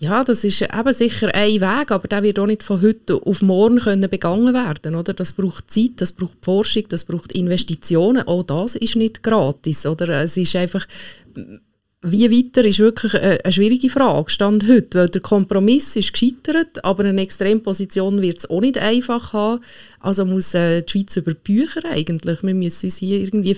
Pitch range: 175-215 Hz